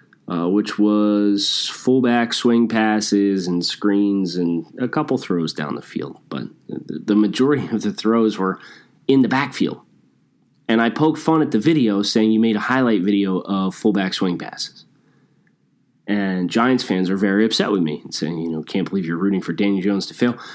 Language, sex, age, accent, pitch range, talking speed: English, male, 30-49, American, 100-130 Hz, 185 wpm